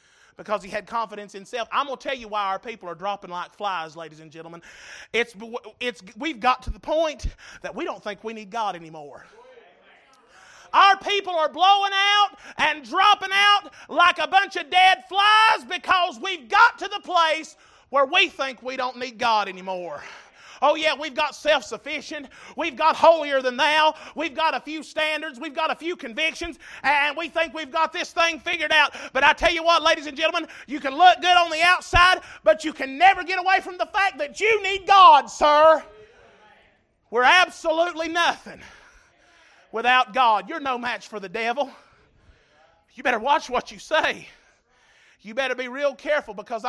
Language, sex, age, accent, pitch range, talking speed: English, male, 30-49, American, 255-345 Hz, 185 wpm